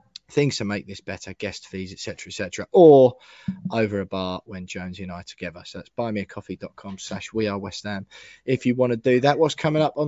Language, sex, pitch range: English, male, 115-145 Hz